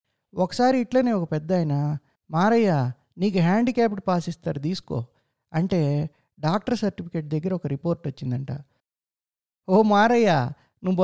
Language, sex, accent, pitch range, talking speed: Telugu, male, native, 140-185 Hz, 110 wpm